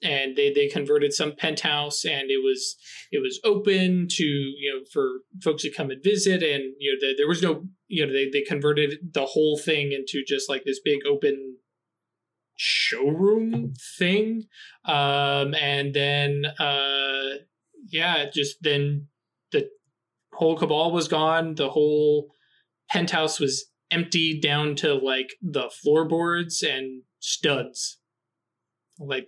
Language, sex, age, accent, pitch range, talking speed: English, male, 20-39, American, 140-175 Hz, 140 wpm